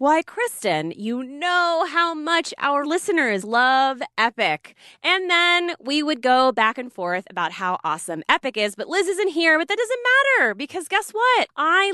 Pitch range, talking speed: 205-330 Hz, 175 wpm